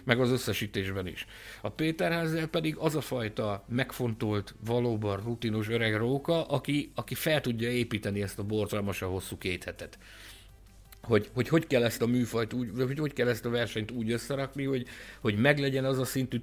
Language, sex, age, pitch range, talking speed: Hungarian, male, 50-69, 100-135 Hz, 170 wpm